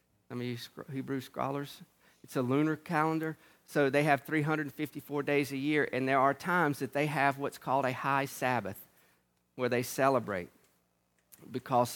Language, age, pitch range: English, 40-59, 125-150 Hz